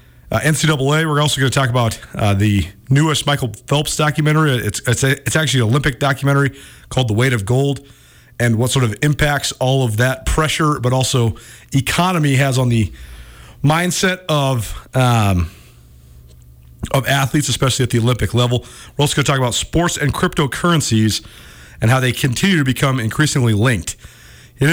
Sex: male